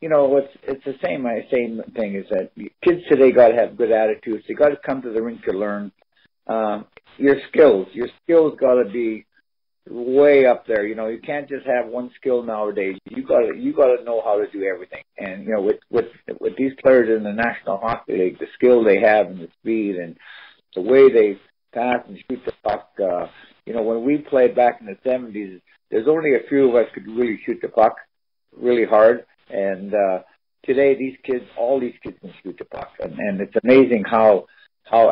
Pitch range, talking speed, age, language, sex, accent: 110-140 Hz, 215 wpm, 50-69, English, male, American